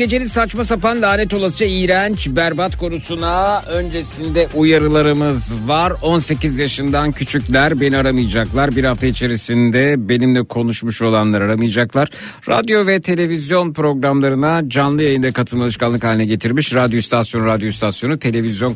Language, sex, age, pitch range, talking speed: Turkish, male, 60-79, 115-150 Hz, 120 wpm